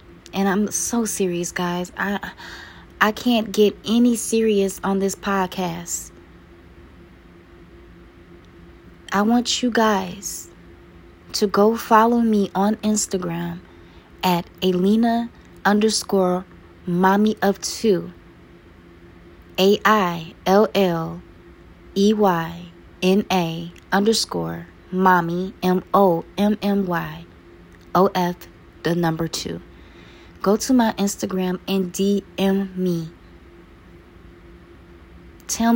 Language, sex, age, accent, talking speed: English, female, 20-39, American, 85 wpm